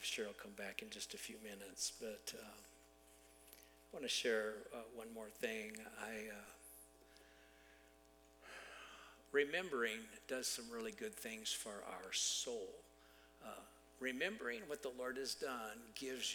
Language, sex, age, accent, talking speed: English, male, 50-69, American, 140 wpm